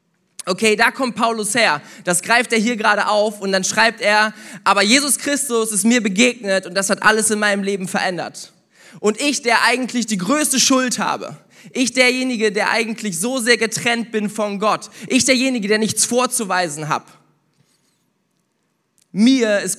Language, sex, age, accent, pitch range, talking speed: German, male, 20-39, German, 200-245 Hz, 165 wpm